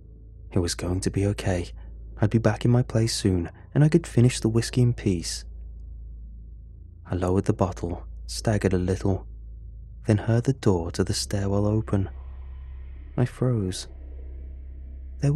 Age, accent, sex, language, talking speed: 20-39, British, male, English, 150 wpm